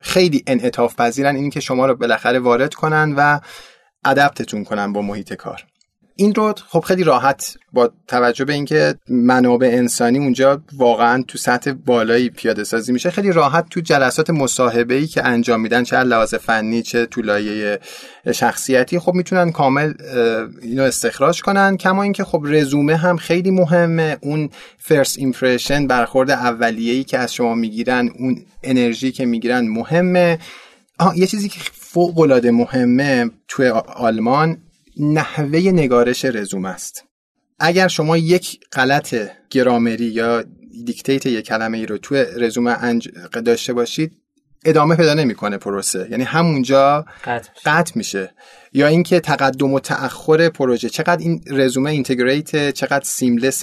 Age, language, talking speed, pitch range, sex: 30-49, Persian, 140 wpm, 120-160 Hz, male